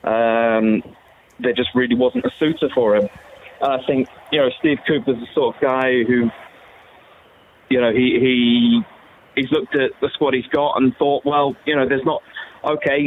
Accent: British